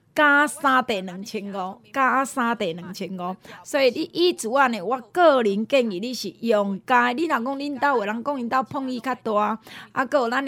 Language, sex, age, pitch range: Chinese, female, 20-39, 205-275 Hz